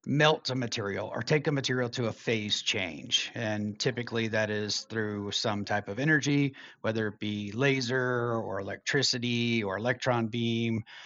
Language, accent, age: English, American, 30-49